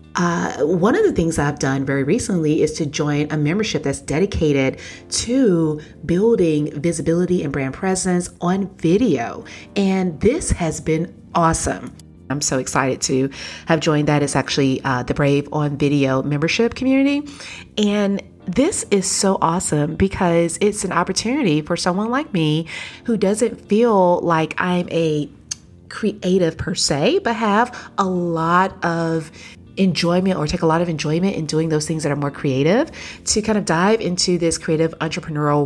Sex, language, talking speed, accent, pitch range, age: female, English, 160 wpm, American, 150-200 Hz, 30-49